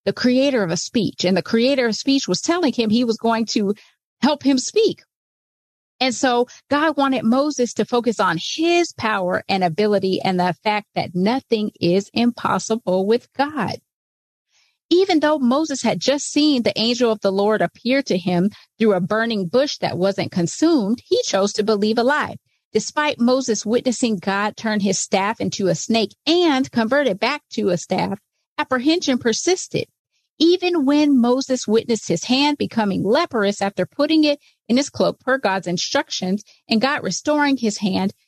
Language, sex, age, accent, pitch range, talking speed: English, female, 40-59, American, 200-280 Hz, 170 wpm